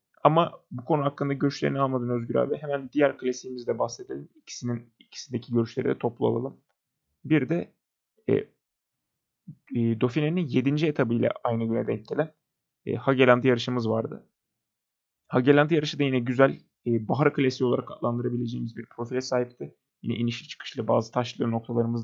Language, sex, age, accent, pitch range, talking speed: Turkish, male, 30-49, native, 125-155 Hz, 140 wpm